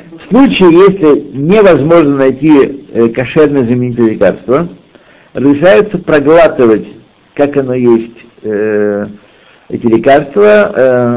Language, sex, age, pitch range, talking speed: Russian, male, 60-79, 120-175 Hz, 80 wpm